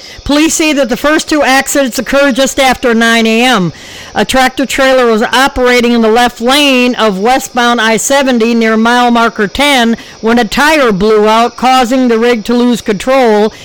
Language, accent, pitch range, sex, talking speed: English, American, 225-270 Hz, female, 165 wpm